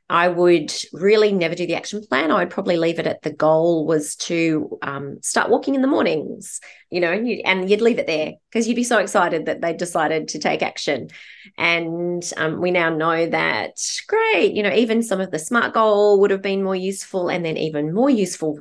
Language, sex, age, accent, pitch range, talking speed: English, female, 30-49, Australian, 145-190 Hz, 220 wpm